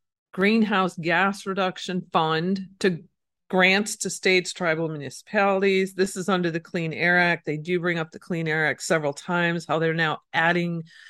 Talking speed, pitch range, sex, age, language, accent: 170 wpm, 160-190 Hz, female, 40-59, English, American